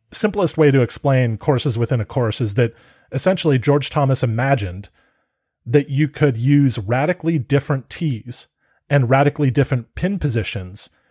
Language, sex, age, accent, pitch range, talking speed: English, male, 30-49, American, 115-145 Hz, 140 wpm